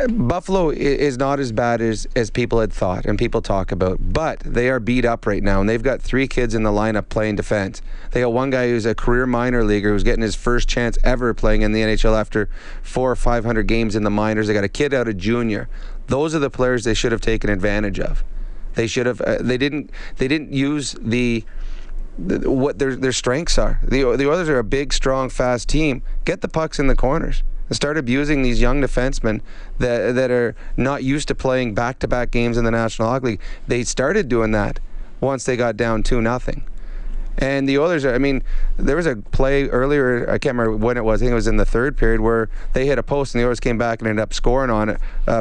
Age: 30-49